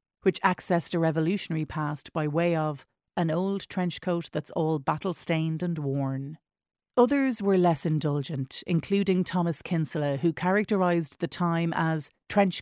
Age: 40-59